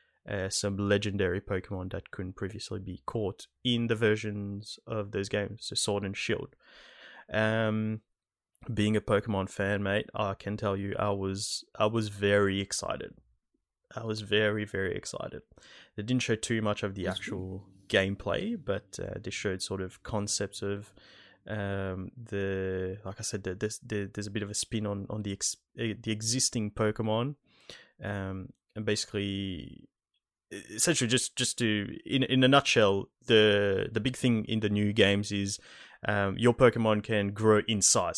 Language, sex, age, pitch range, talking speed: English, male, 20-39, 100-115 Hz, 165 wpm